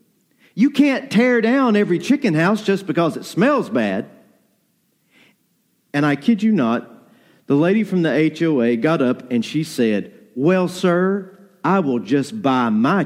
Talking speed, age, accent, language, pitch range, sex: 155 wpm, 50-69, American, English, 150-210 Hz, male